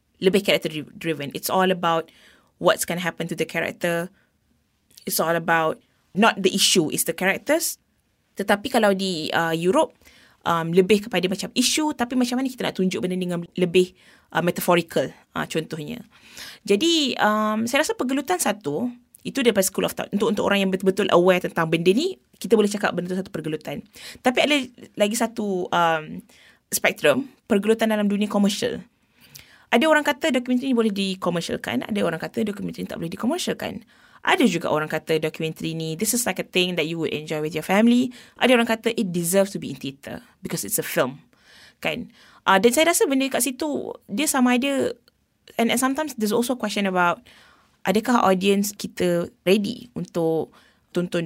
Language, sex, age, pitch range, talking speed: English, female, 20-39, 170-235 Hz, 180 wpm